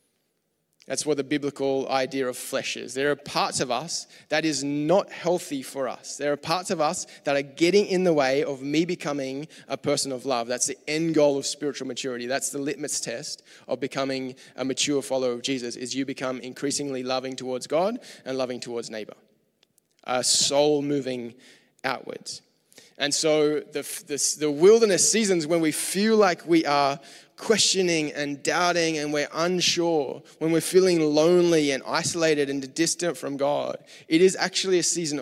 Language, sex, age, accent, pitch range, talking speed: English, male, 20-39, Australian, 135-165 Hz, 175 wpm